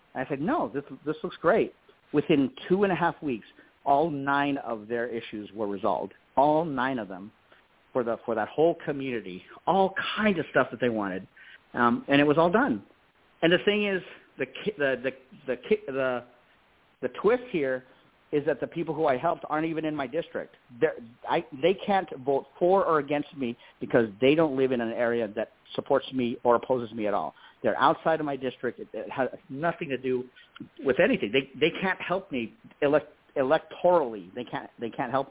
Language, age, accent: English, 40-59, American